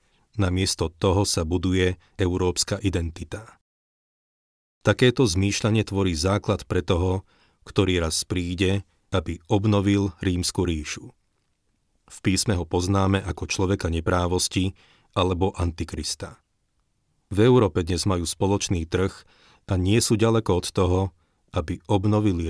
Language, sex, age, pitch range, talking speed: Slovak, male, 40-59, 85-100 Hz, 110 wpm